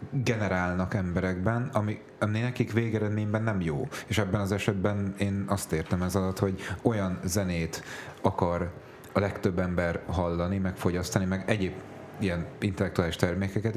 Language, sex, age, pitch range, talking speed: Hungarian, male, 30-49, 95-110 Hz, 140 wpm